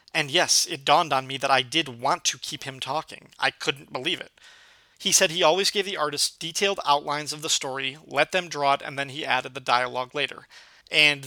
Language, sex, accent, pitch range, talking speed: English, male, American, 145-170 Hz, 225 wpm